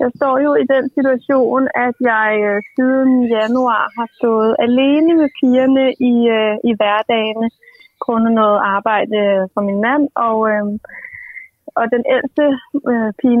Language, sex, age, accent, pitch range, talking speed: Danish, female, 30-49, native, 225-265 Hz, 150 wpm